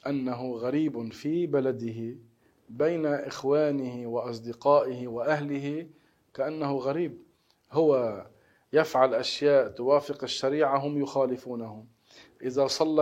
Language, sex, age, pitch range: Arabic, male, 40-59, 120-145 Hz